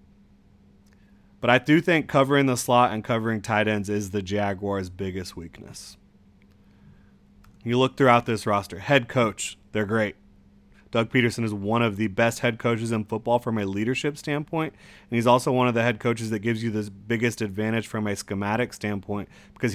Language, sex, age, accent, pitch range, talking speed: English, male, 30-49, American, 100-125 Hz, 180 wpm